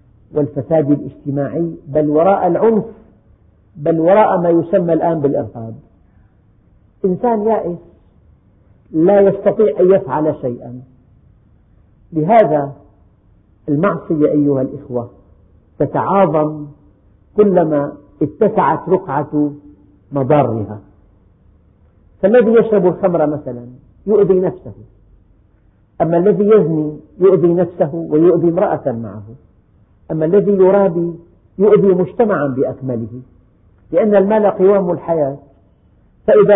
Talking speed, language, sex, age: 85 wpm, Arabic, female, 50-69